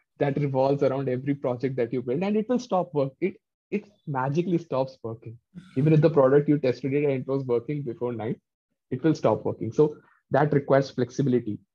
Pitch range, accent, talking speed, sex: 120-155 Hz, Indian, 200 wpm, male